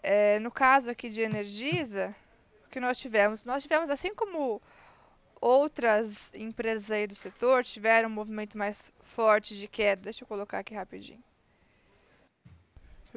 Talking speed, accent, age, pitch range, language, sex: 145 wpm, Brazilian, 20-39, 215-275 Hz, Portuguese, female